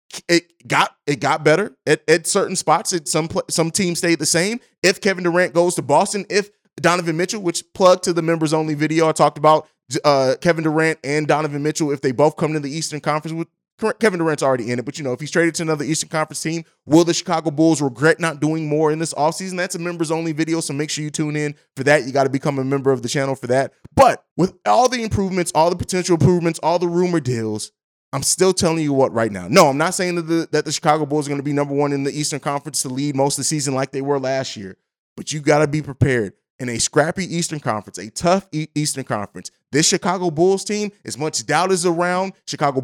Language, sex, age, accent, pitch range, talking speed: English, male, 20-39, American, 140-170 Hz, 245 wpm